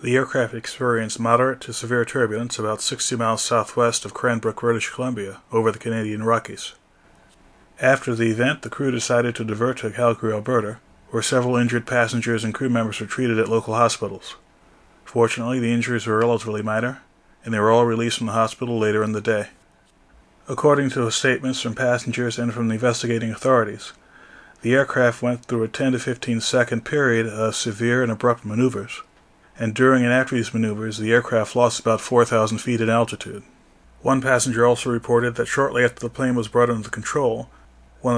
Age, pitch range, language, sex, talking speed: 30-49, 110-120 Hz, English, male, 175 wpm